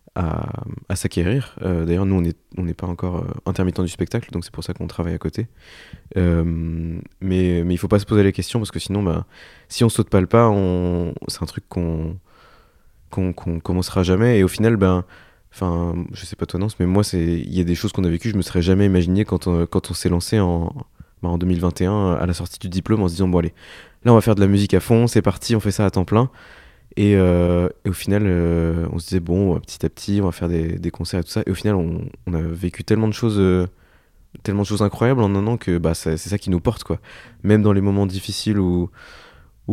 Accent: French